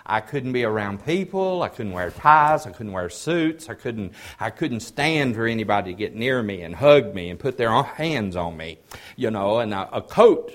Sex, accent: male, American